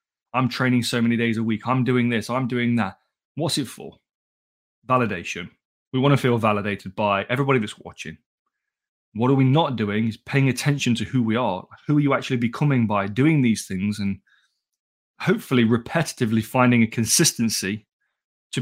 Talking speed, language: 175 wpm, English